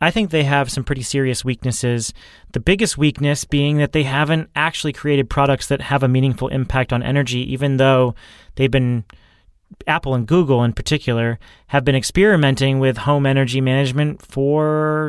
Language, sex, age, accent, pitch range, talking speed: English, male, 30-49, American, 120-150 Hz, 165 wpm